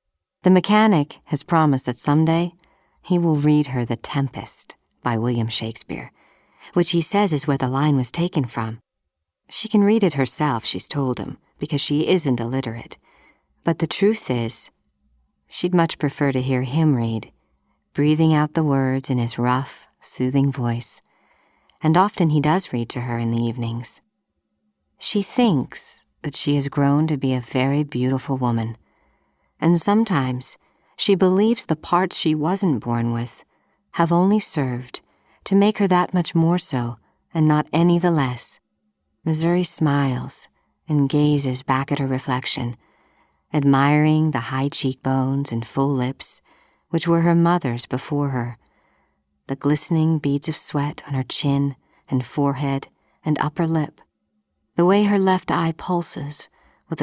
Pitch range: 125-165 Hz